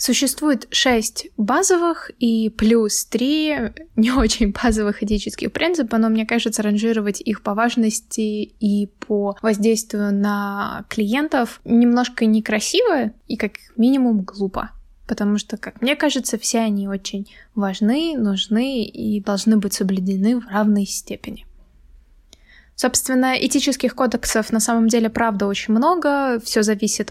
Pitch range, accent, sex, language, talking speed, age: 210-245 Hz, native, female, Russian, 125 wpm, 20-39